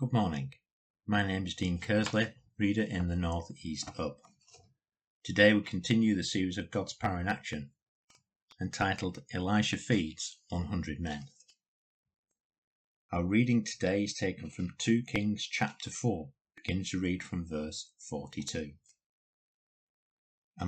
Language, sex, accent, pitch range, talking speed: English, male, British, 85-105 Hz, 130 wpm